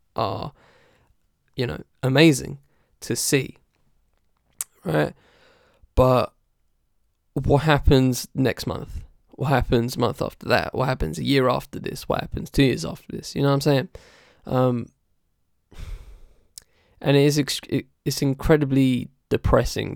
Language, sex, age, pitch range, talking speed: English, male, 10-29, 125-150 Hz, 125 wpm